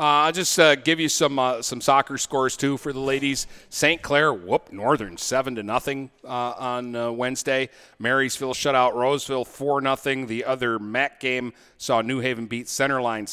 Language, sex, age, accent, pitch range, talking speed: English, male, 40-59, American, 115-140 Hz, 180 wpm